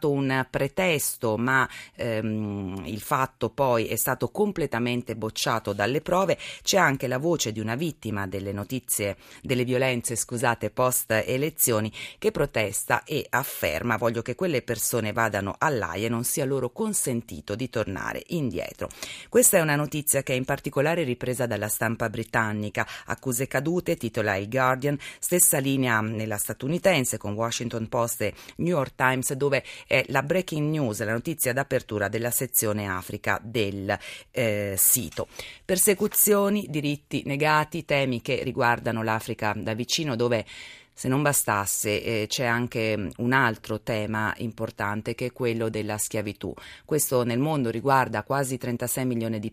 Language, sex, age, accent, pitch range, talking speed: Italian, female, 30-49, native, 110-135 Hz, 145 wpm